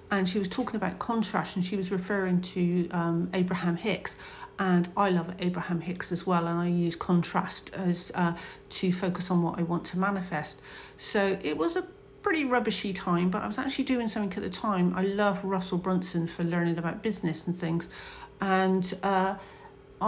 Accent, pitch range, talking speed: British, 175-200 Hz, 190 wpm